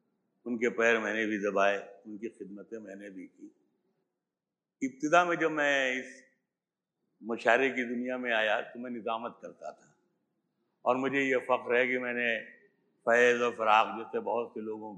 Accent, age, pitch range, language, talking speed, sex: native, 60-79, 120-180 Hz, Hindi, 155 wpm, male